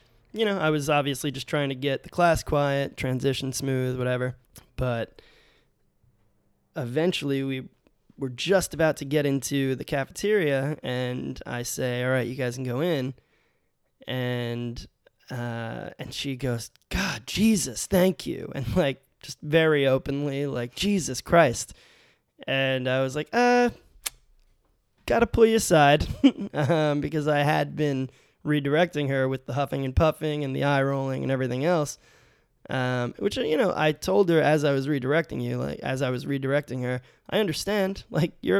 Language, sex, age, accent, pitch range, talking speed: English, male, 20-39, American, 130-155 Hz, 160 wpm